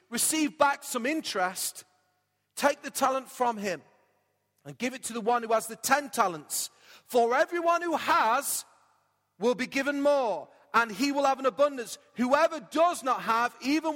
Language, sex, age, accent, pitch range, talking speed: English, male, 40-59, British, 235-300 Hz, 170 wpm